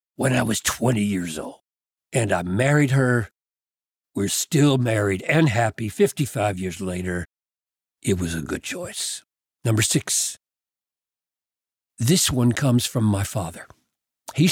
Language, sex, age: English, male, 60-79